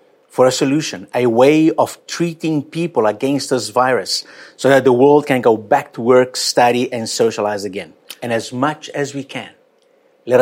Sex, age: male, 50-69